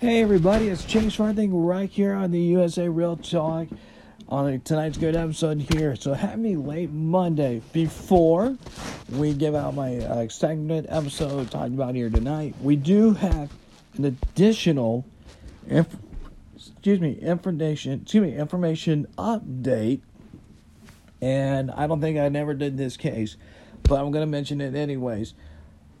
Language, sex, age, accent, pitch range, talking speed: English, male, 50-69, American, 140-180 Hz, 140 wpm